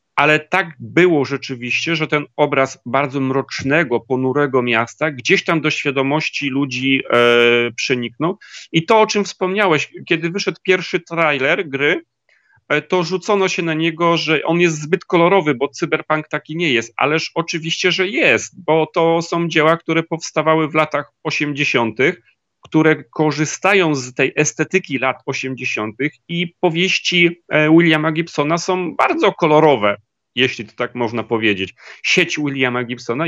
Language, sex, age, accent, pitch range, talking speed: Polish, male, 40-59, native, 135-170 Hz, 145 wpm